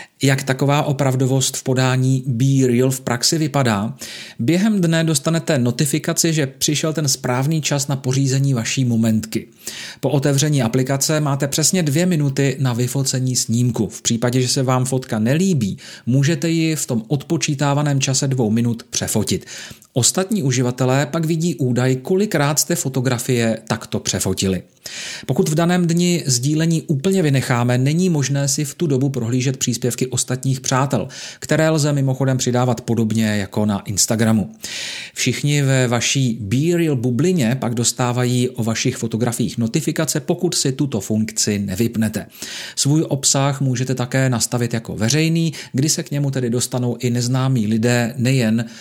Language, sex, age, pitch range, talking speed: Czech, male, 40-59, 120-150 Hz, 145 wpm